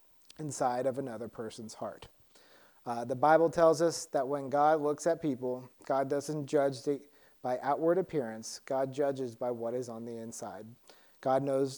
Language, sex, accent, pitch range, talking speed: English, male, American, 125-155 Hz, 170 wpm